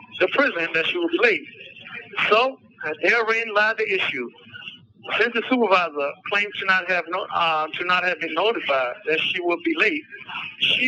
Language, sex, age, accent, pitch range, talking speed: English, male, 60-79, American, 170-220 Hz, 150 wpm